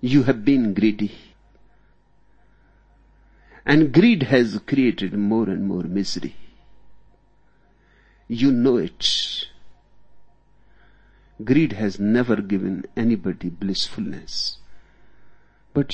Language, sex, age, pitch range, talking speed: English, male, 50-69, 105-140 Hz, 85 wpm